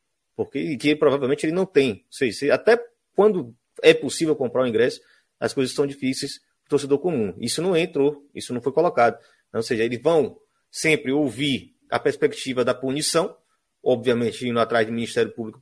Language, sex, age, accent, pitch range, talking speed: Portuguese, male, 30-49, Brazilian, 125-165 Hz, 175 wpm